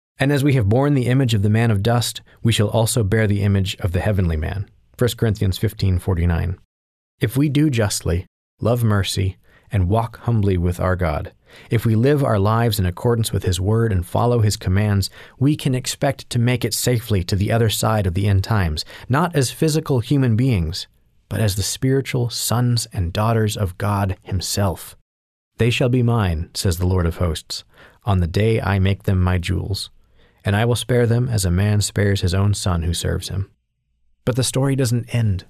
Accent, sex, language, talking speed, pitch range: American, male, English, 205 wpm, 95-120 Hz